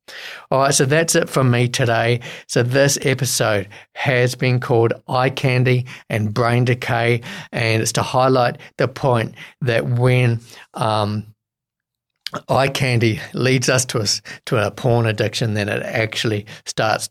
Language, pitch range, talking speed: English, 115-140 Hz, 145 wpm